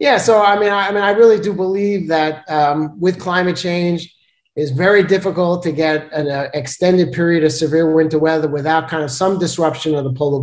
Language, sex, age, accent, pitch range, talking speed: English, male, 30-49, American, 135-175 Hz, 215 wpm